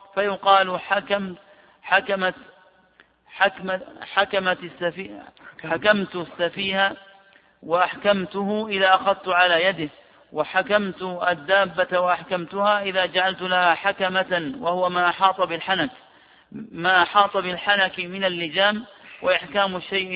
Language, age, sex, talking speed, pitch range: Arabic, 50-69, male, 95 wpm, 180-195 Hz